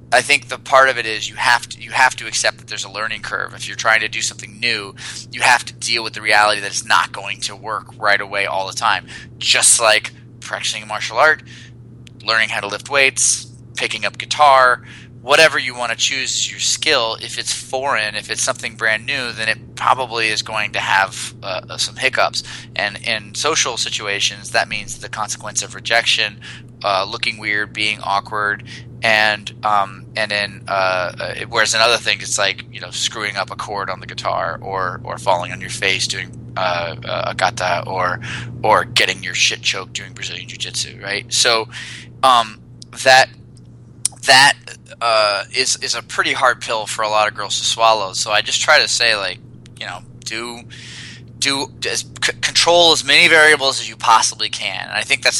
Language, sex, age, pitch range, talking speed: English, male, 20-39, 110-125 Hz, 195 wpm